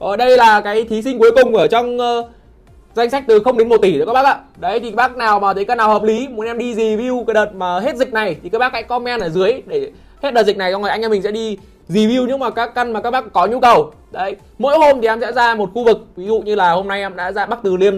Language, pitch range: Vietnamese, 205-260 Hz